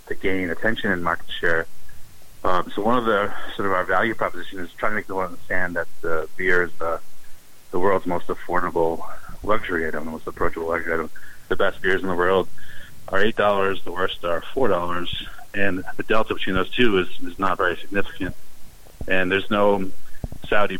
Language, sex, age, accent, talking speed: English, male, 30-49, American, 195 wpm